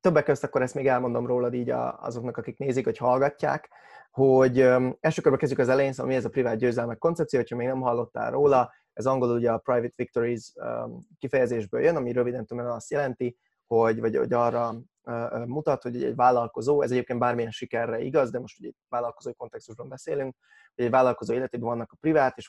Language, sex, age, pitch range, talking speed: Hungarian, male, 20-39, 115-130 Hz, 205 wpm